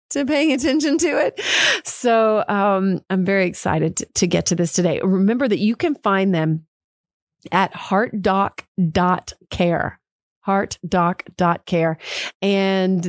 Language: English